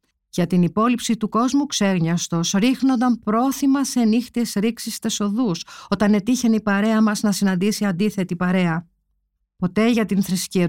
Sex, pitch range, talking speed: female, 180-240 Hz, 140 wpm